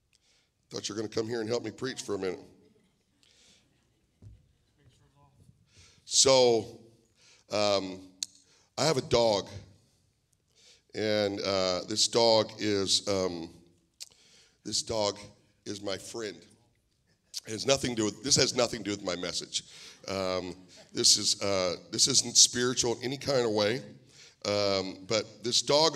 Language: English